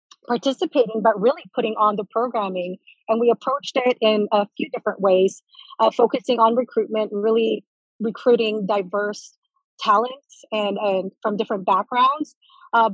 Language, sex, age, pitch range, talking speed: English, female, 30-49, 200-230 Hz, 140 wpm